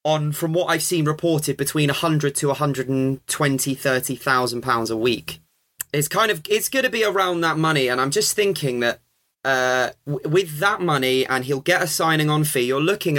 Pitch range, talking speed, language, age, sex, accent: 130-160 Hz, 195 wpm, English, 20-39, male, British